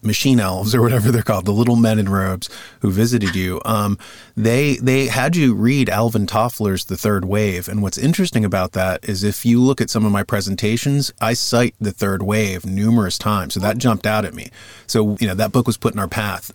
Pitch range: 95-115 Hz